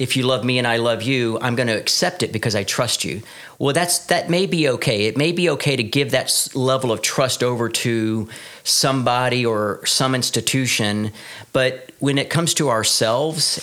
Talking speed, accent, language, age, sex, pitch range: 200 wpm, American, English, 40-59, male, 110-135 Hz